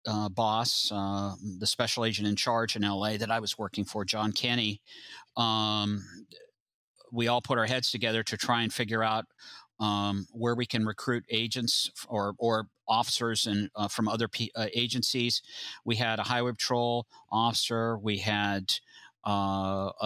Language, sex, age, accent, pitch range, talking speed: English, male, 50-69, American, 105-115 Hz, 160 wpm